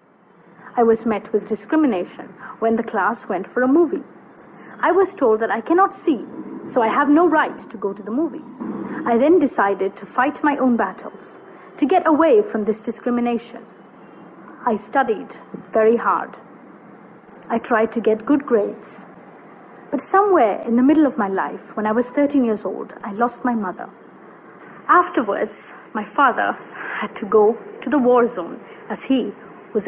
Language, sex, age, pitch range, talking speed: Hindi, female, 30-49, 220-300 Hz, 170 wpm